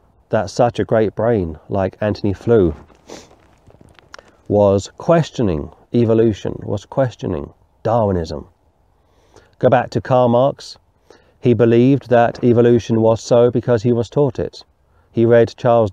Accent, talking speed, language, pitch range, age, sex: British, 125 wpm, English, 100-120 Hz, 40-59, male